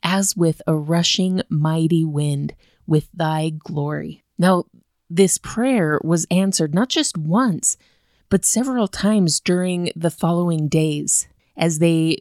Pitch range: 155-190 Hz